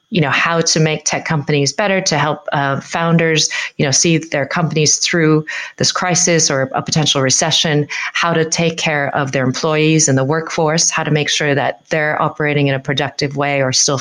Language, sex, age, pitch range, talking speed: English, female, 30-49, 145-170 Hz, 200 wpm